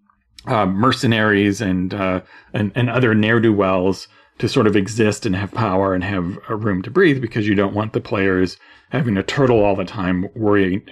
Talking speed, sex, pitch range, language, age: 185 wpm, male, 100-125 Hz, English, 40-59